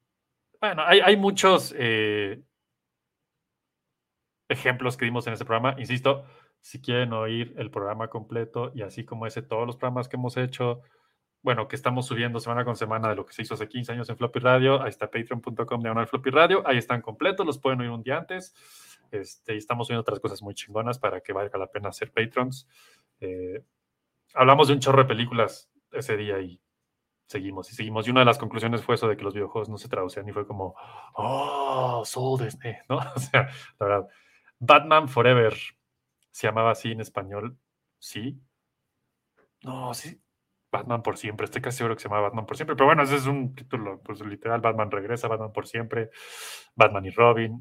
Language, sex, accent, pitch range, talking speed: Spanish, male, Mexican, 110-130 Hz, 190 wpm